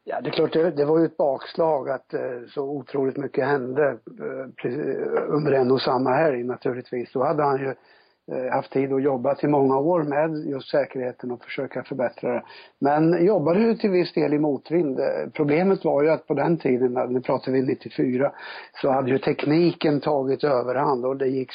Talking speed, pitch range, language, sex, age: 185 wpm, 130-160 Hz, Swedish, male, 60-79